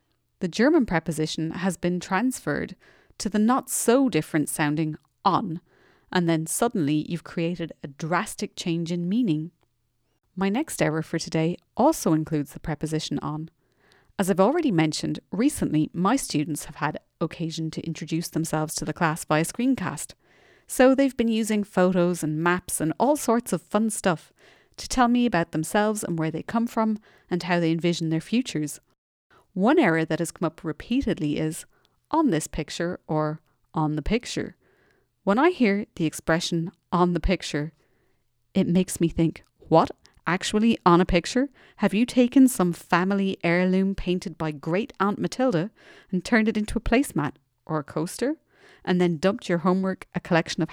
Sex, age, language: female, 30-49, English